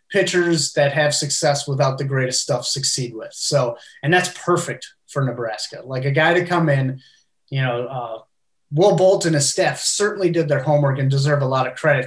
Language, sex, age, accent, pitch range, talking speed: English, male, 30-49, American, 140-165 Hz, 200 wpm